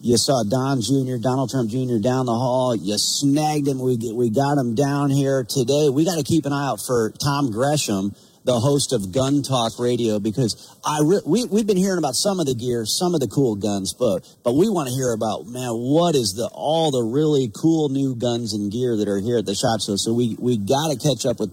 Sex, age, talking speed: male, 40-59, 240 wpm